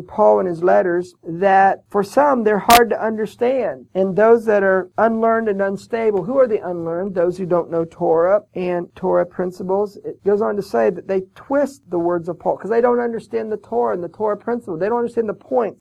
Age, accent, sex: 50-69, American, male